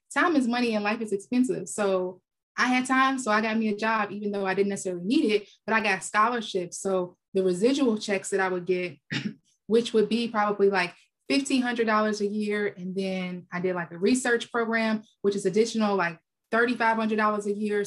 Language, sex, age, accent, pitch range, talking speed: English, female, 20-39, American, 185-225 Hz, 200 wpm